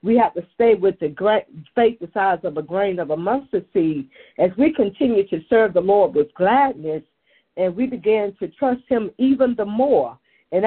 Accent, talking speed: American, 195 wpm